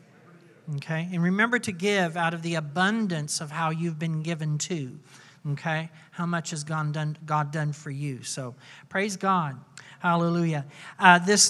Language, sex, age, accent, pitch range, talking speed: English, male, 50-69, American, 150-185 Hz, 155 wpm